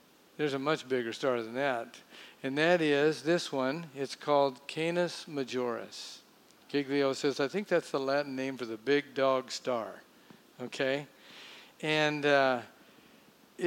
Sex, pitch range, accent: male, 135-170 Hz, American